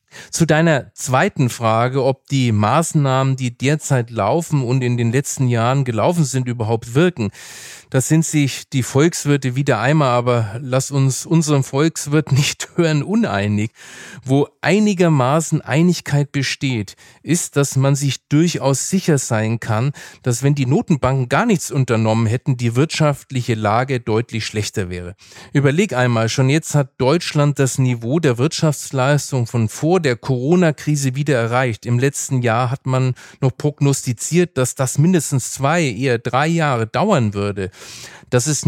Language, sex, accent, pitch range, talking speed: German, male, German, 120-150 Hz, 145 wpm